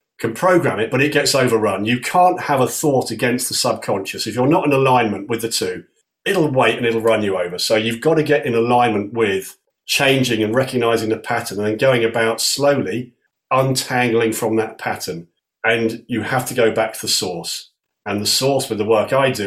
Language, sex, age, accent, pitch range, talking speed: English, male, 40-59, British, 110-130 Hz, 215 wpm